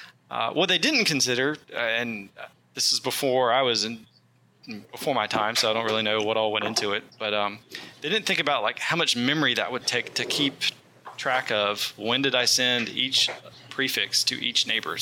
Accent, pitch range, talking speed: American, 115-135 Hz, 210 wpm